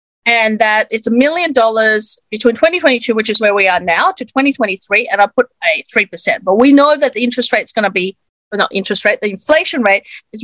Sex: female